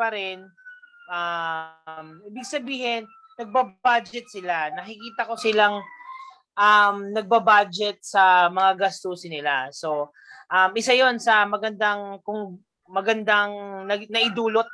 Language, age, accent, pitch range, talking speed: Filipino, 20-39, native, 190-240 Hz, 100 wpm